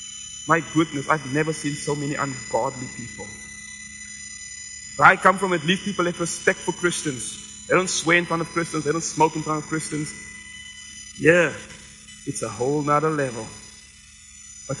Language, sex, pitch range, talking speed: English, male, 105-165 Hz, 165 wpm